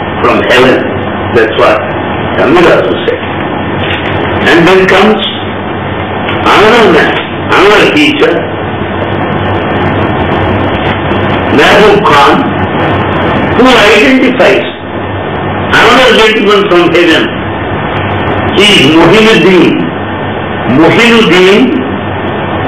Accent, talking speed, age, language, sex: Indian, 65 wpm, 60-79, English, male